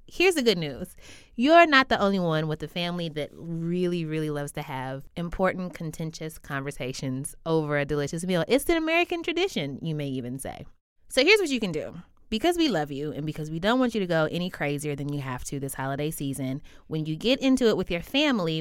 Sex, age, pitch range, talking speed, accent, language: female, 20-39, 150-235 Hz, 220 wpm, American, English